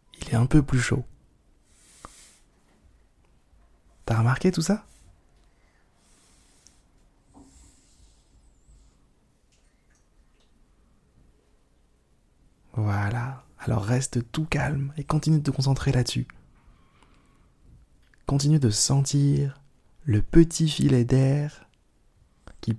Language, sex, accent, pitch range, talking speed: French, male, French, 85-130 Hz, 75 wpm